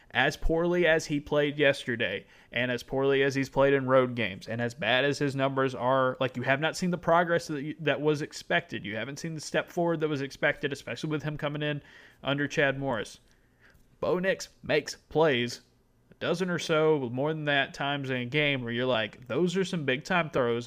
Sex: male